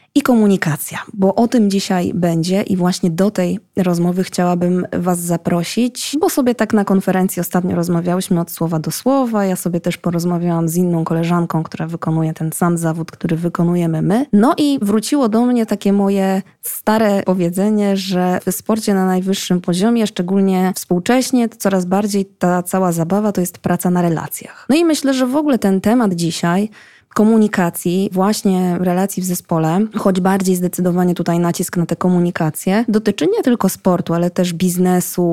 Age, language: 20-39, Polish